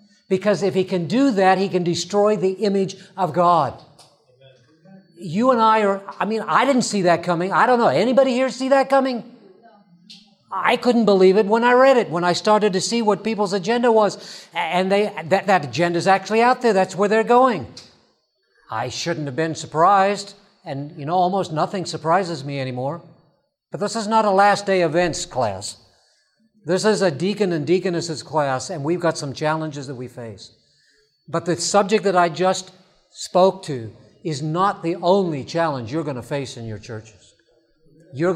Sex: male